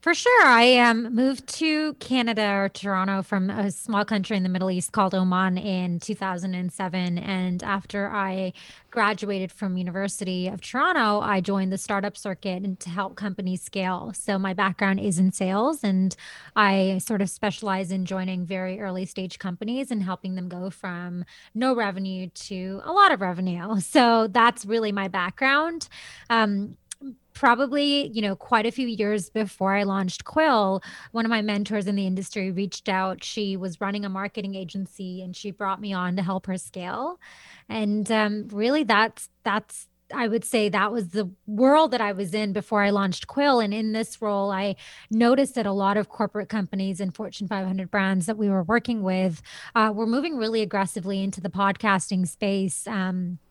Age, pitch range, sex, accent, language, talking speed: 20-39, 190-220 Hz, female, American, English, 180 wpm